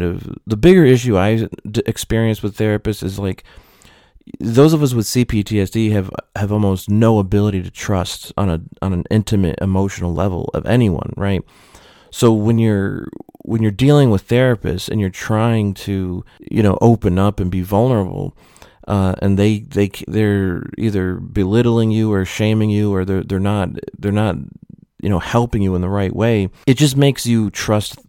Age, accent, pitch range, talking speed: 30-49, American, 95-115 Hz, 175 wpm